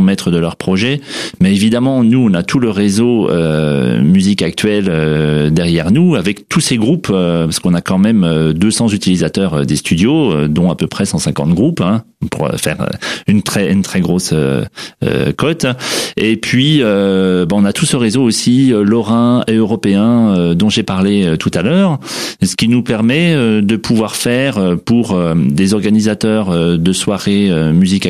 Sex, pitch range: male, 90-120 Hz